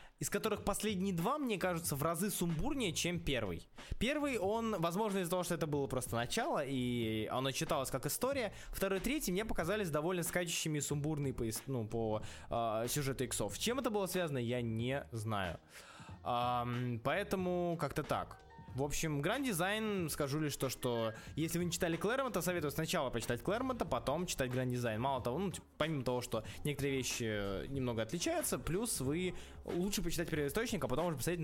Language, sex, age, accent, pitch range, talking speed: Russian, male, 20-39, native, 125-200 Hz, 175 wpm